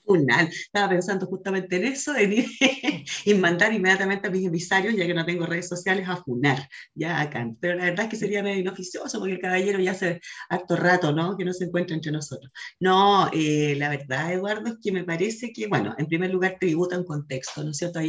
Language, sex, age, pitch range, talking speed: Spanish, female, 30-49, 160-200 Hz, 220 wpm